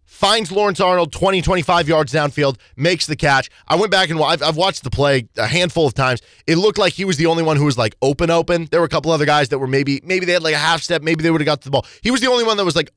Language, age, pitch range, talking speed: English, 20-39, 135-190 Hz, 315 wpm